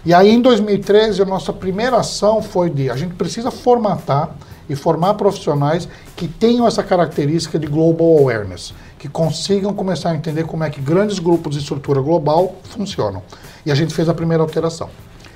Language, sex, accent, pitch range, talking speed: Portuguese, male, Brazilian, 145-190 Hz, 175 wpm